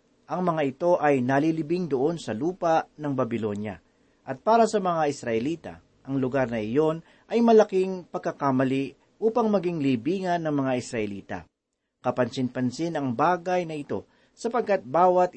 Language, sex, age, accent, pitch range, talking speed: Filipino, male, 40-59, native, 130-180 Hz, 135 wpm